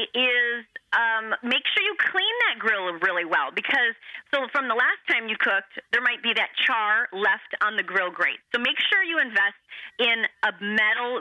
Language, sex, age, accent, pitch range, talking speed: English, female, 30-49, American, 200-245 Hz, 195 wpm